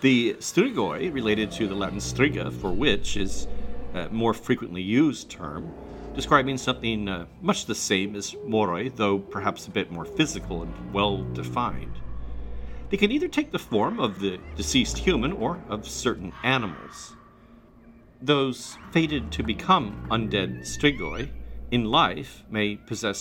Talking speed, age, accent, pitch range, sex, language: 140 wpm, 40-59, American, 85-130 Hz, male, English